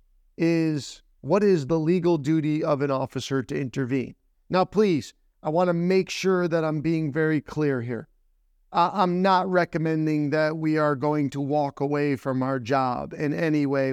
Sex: male